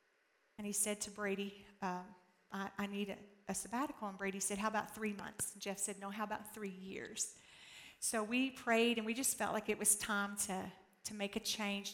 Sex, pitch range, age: female, 205-260 Hz, 40-59